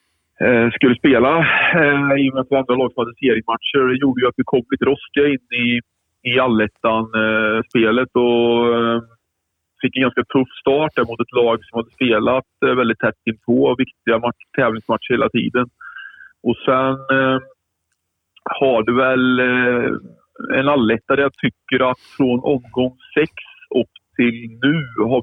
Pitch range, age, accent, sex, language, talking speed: 115-130 Hz, 40-59, Norwegian, male, Swedish, 135 wpm